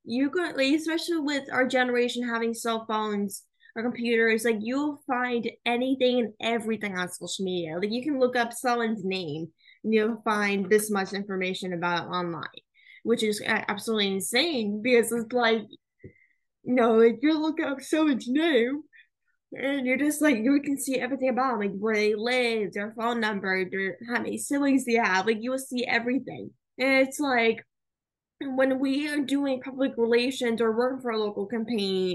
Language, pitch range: English, 205-255 Hz